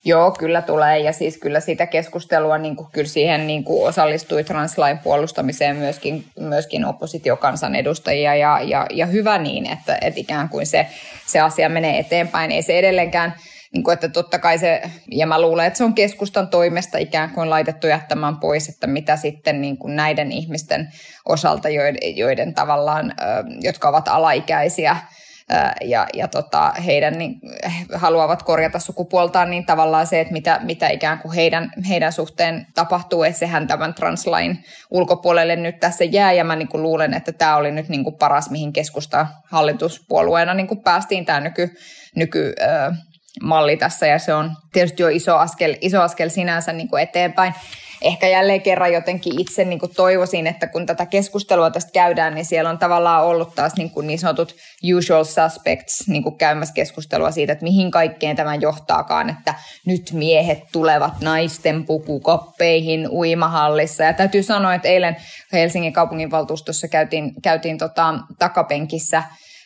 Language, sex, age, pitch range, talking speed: Finnish, female, 20-39, 155-175 Hz, 155 wpm